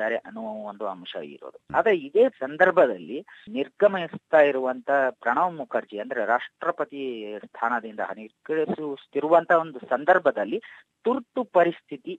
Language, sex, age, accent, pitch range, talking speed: Kannada, female, 30-49, native, 135-195 Hz, 90 wpm